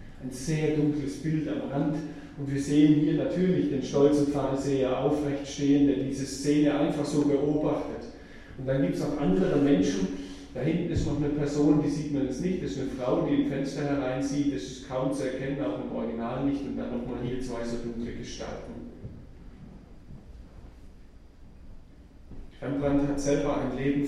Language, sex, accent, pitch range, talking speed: German, male, German, 115-140 Hz, 175 wpm